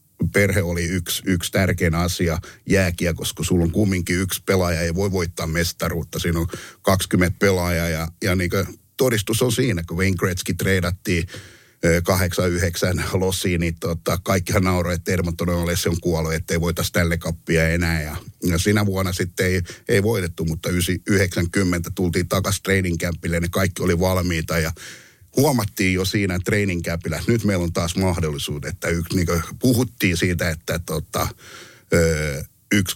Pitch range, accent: 85-100 Hz, native